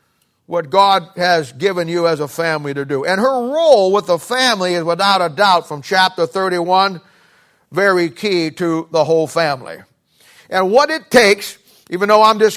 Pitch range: 180-235 Hz